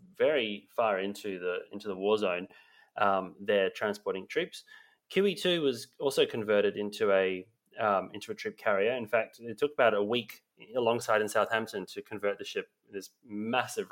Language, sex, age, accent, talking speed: English, male, 20-39, Australian, 165 wpm